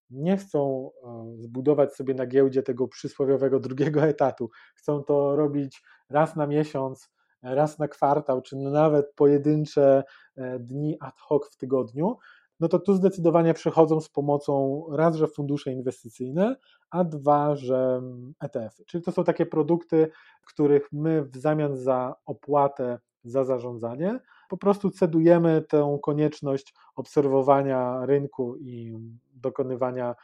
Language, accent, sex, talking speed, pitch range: Polish, native, male, 125 wpm, 130-155 Hz